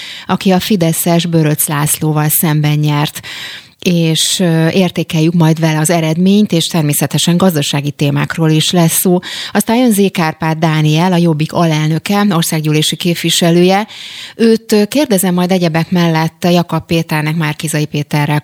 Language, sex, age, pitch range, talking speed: Hungarian, female, 30-49, 155-180 Hz, 120 wpm